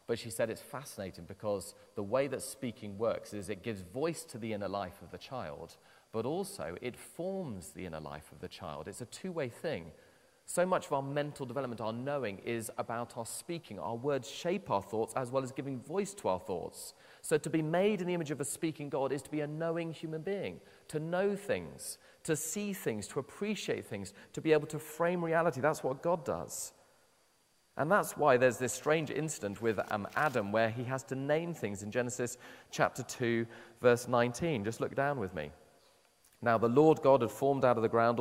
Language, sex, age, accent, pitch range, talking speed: English, male, 40-59, British, 110-150 Hz, 210 wpm